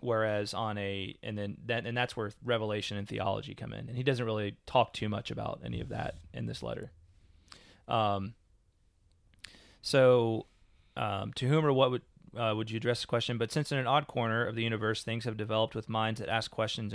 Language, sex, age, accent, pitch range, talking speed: English, male, 30-49, American, 105-125 Hz, 205 wpm